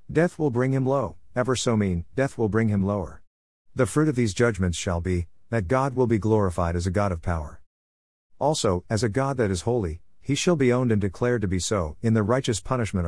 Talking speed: 230 wpm